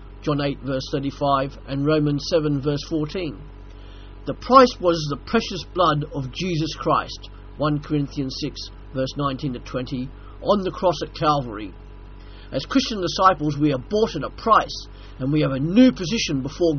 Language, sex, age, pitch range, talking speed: English, male, 50-69, 130-180 Hz, 165 wpm